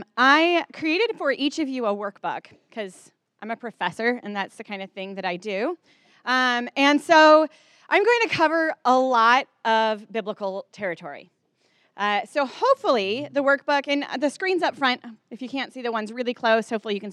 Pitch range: 215-295 Hz